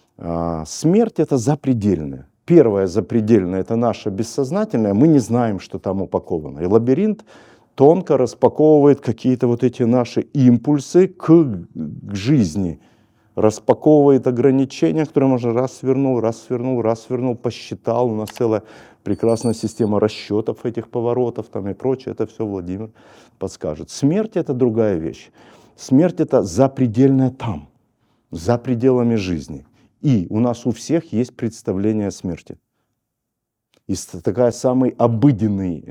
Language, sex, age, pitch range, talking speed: Russian, male, 50-69, 105-135 Hz, 125 wpm